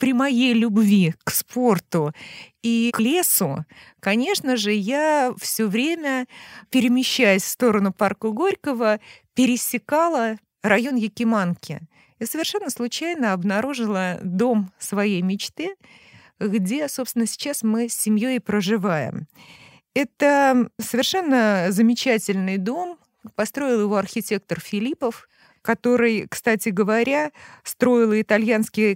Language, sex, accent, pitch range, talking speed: Russian, female, native, 200-250 Hz, 100 wpm